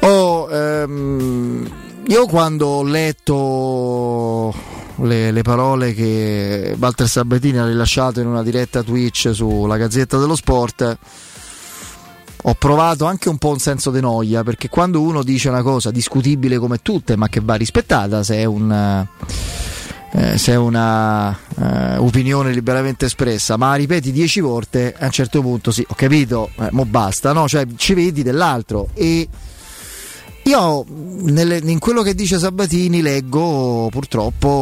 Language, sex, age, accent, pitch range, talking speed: Italian, male, 30-49, native, 115-145 Hz, 135 wpm